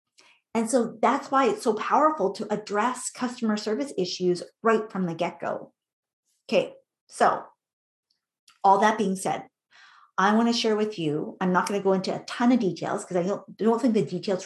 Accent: American